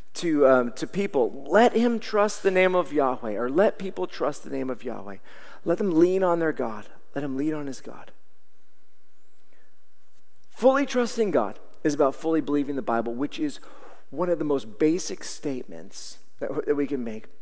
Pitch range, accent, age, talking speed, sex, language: 150-220 Hz, American, 40-59, 185 wpm, male, English